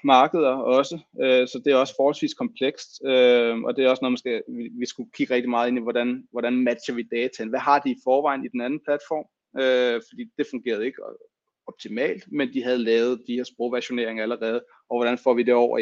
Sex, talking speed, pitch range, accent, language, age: male, 200 wpm, 115-140 Hz, native, Danish, 30-49